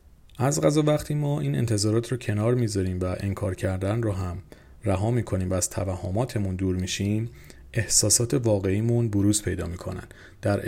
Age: 30-49